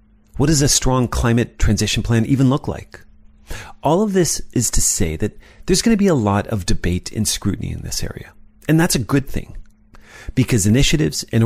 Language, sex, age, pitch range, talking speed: English, male, 40-59, 95-130 Hz, 200 wpm